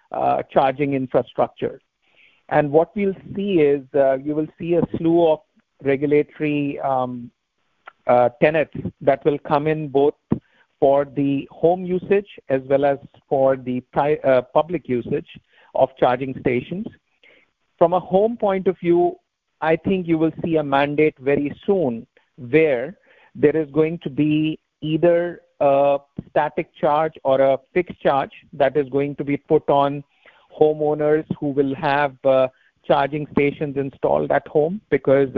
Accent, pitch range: Indian, 135-160 Hz